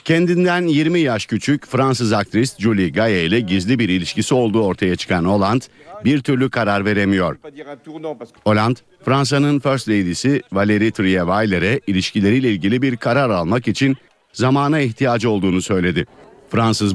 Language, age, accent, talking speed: Turkish, 50-69, native, 130 wpm